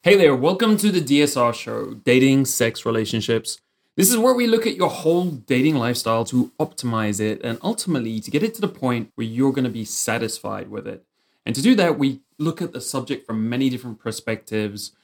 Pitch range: 110-145 Hz